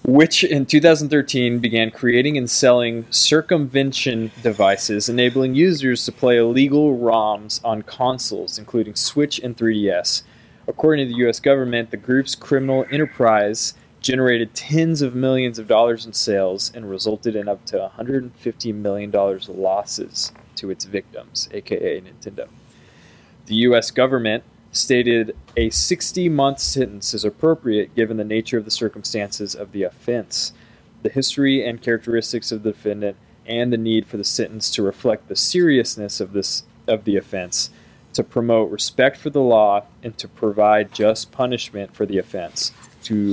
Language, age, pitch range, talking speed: English, 20-39, 110-130 Hz, 145 wpm